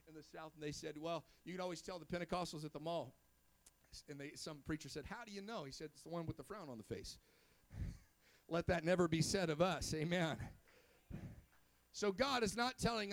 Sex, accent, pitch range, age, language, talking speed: male, American, 185-250 Hz, 50-69, English, 220 wpm